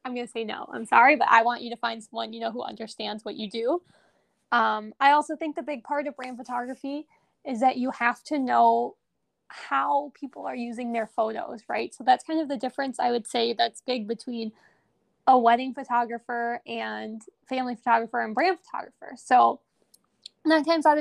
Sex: female